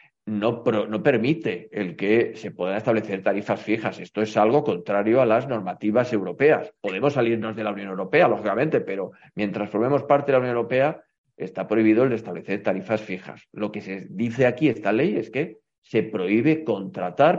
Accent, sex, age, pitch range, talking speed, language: Spanish, male, 40-59, 105-135 Hz, 185 wpm, Spanish